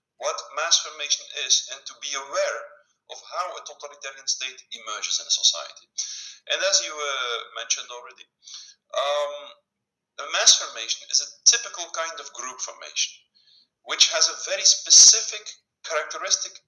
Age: 50-69